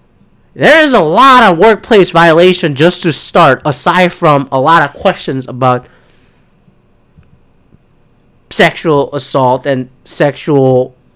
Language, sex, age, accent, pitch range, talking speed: English, male, 30-49, American, 160-225 Hz, 110 wpm